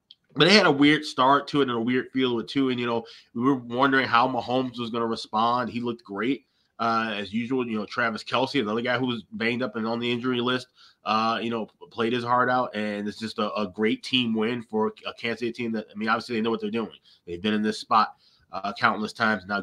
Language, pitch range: English, 105-120 Hz